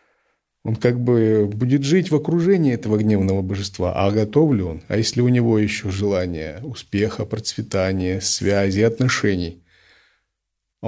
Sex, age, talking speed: male, 50-69, 140 wpm